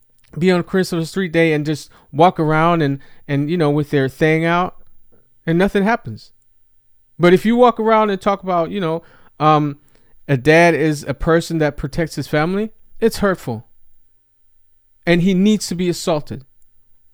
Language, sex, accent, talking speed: English, male, American, 170 wpm